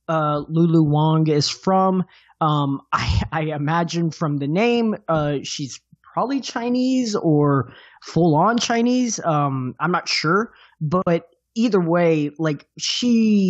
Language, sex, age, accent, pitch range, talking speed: English, male, 20-39, American, 145-180 Hz, 130 wpm